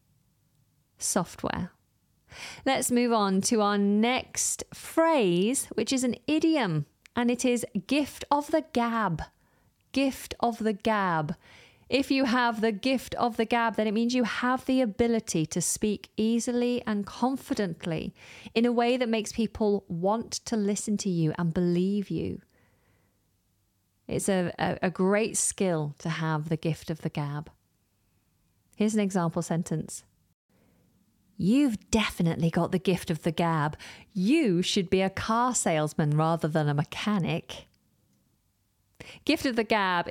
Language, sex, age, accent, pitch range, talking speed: English, female, 30-49, British, 165-230 Hz, 145 wpm